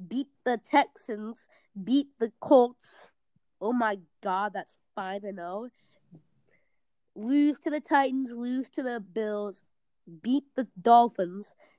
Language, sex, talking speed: English, female, 120 wpm